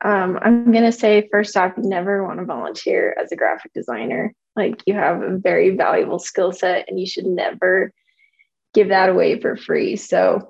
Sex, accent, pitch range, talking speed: female, American, 195-230 Hz, 190 wpm